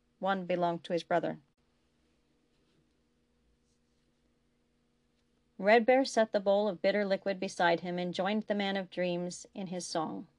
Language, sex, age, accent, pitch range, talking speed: English, female, 40-59, American, 175-210 Hz, 140 wpm